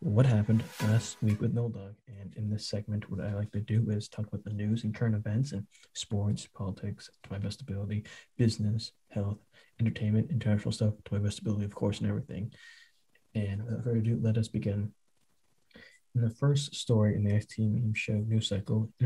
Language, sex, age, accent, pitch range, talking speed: English, male, 20-39, American, 105-115 Hz, 200 wpm